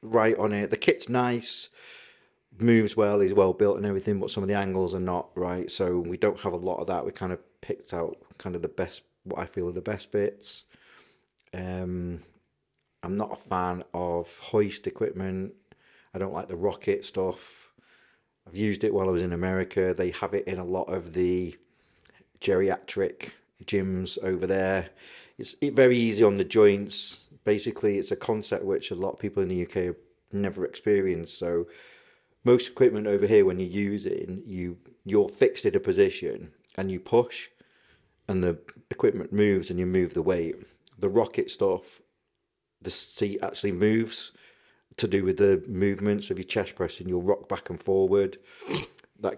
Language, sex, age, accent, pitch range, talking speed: English, male, 40-59, British, 90-155 Hz, 180 wpm